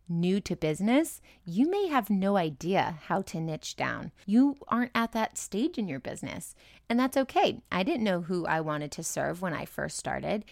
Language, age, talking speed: English, 30-49, 200 wpm